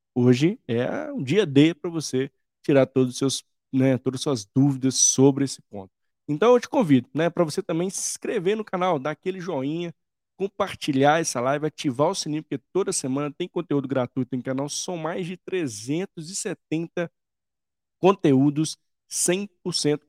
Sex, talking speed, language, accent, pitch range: male, 160 wpm, Portuguese, Brazilian, 130-170 Hz